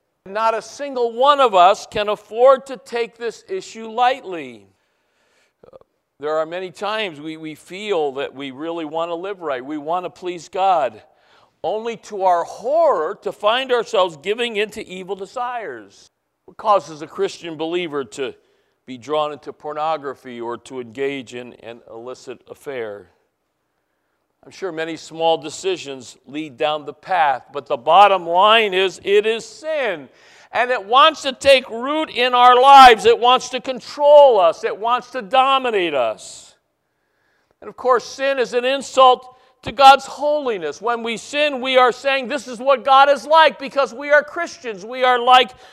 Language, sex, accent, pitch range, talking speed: English, male, American, 170-270 Hz, 165 wpm